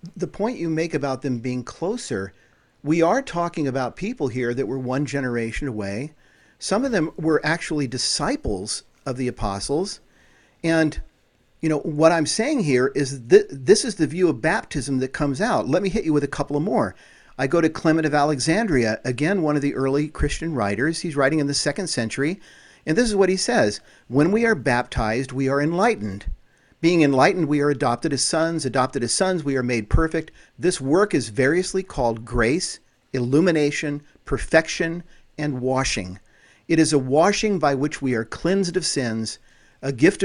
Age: 50-69